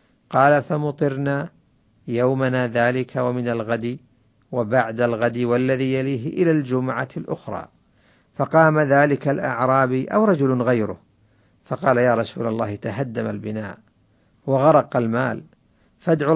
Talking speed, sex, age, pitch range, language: 105 wpm, male, 50-69, 115-145 Hz, Arabic